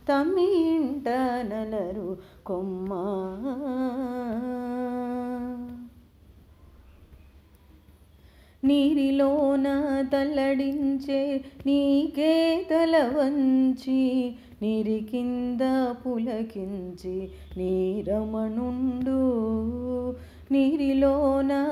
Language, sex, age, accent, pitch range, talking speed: Telugu, female, 30-49, native, 240-285 Hz, 35 wpm